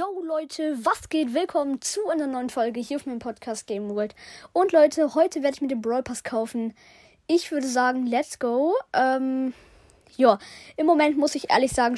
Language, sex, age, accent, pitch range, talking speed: German, female, 20-39, German, 245-295 Hz, 190 wpm